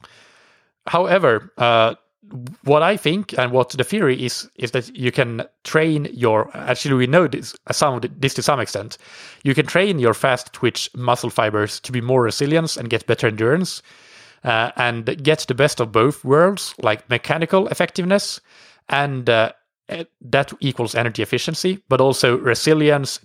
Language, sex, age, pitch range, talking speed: English, male, 30-49, 120-155 Hz, 150 wpm